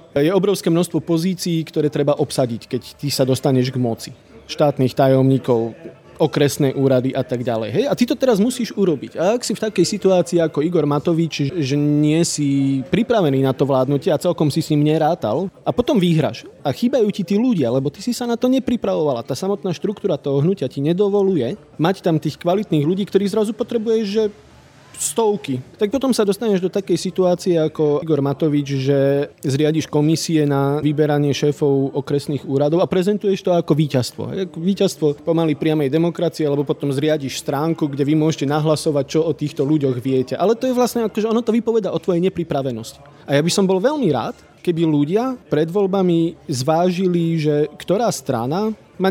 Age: 30-49